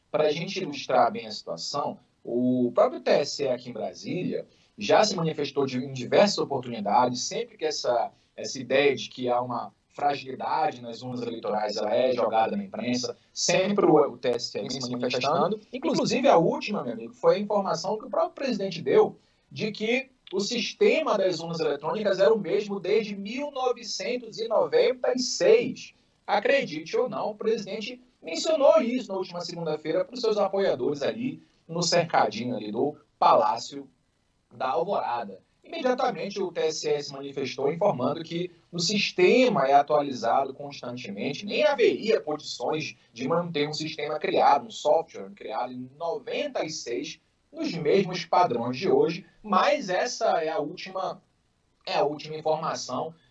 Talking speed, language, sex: 140 wpm, Portuguese, male